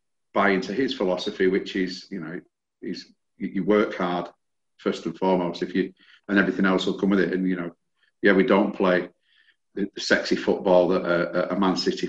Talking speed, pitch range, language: 195 wpm, 90-100 Hz, English